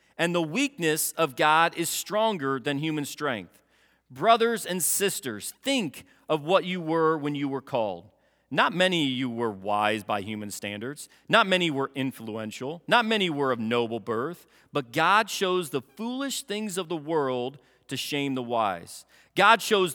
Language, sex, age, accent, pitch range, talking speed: English, male, 40-59, American, 120-180 Hz, 170 wpm